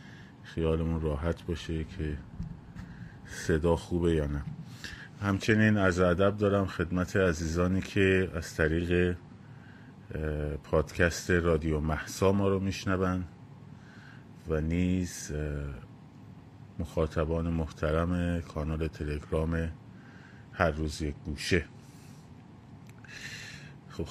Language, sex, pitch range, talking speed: Persian, male, 80-100 Hz, 85 wpm